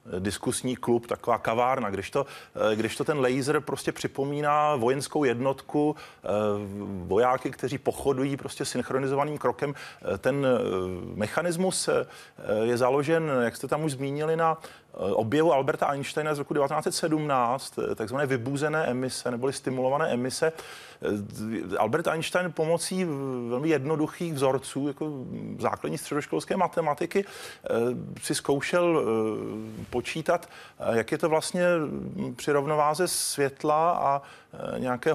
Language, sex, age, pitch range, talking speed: Czech, male, 30-49, 125-160 Hz, 105 wpm